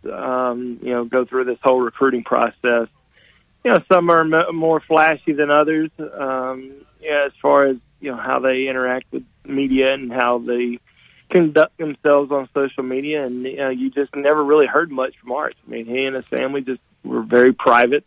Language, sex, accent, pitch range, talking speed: English, male, American, 125-145 Hz, 185 wpm